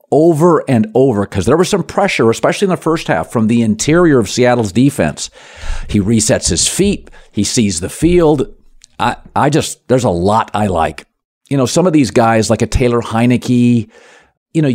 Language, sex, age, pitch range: English, male, 50-69, 105-145 Hz